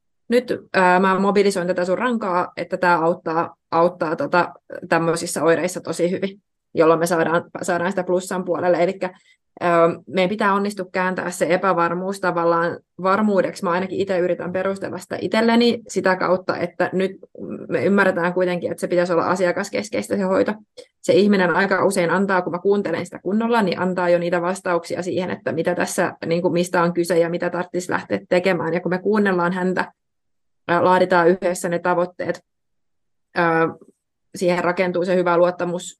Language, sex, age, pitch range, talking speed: Finnish, female, 20-39, 175-185 Hz, 160 wpm